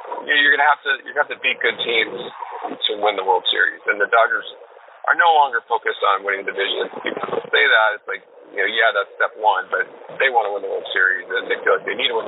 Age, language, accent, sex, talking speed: 40-59, English, American, male, 265 wpm